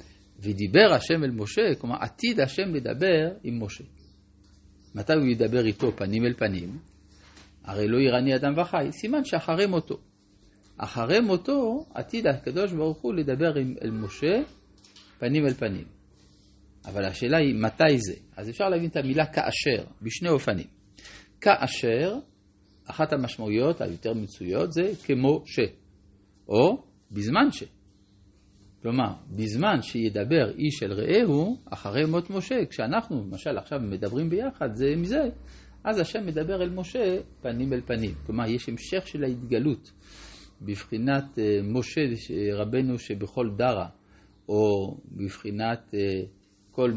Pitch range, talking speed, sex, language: 100-150 Hz, 130 wpm, male, Hebrew